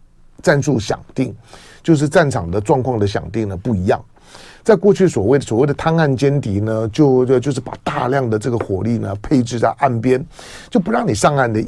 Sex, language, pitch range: male, Chinese, 110-145 Hz